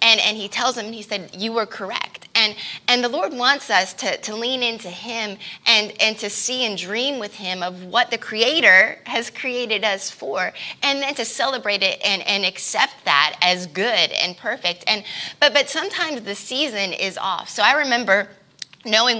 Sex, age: female, 20-39